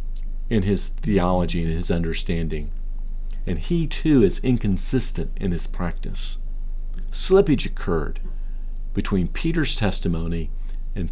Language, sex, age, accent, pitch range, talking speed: English, male, 50-69, American, 90-125 Hz, 110 wpm